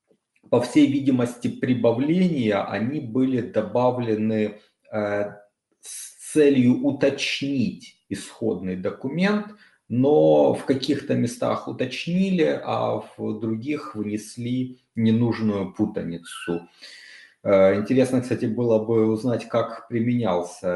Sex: male